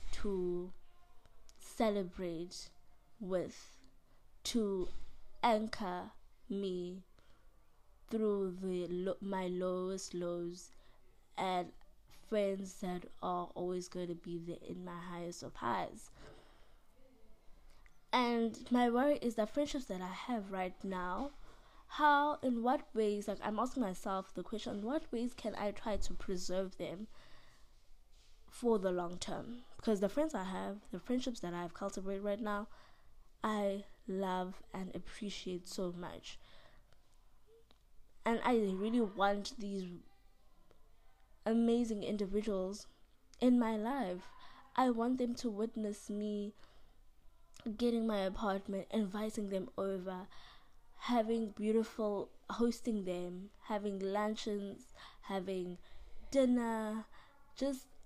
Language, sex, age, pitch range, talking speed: English, female, 20-39, 185-230 Hz, 110 wpm